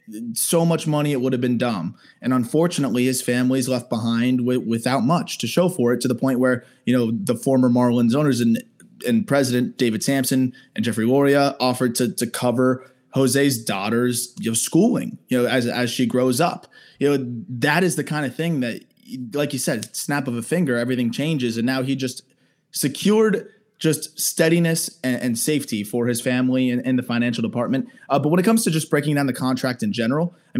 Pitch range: 115-140 Hz